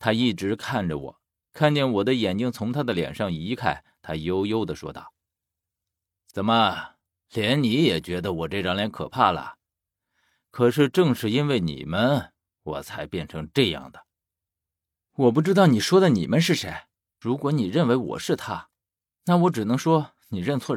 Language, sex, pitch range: Chinese, male, 90-135 Hz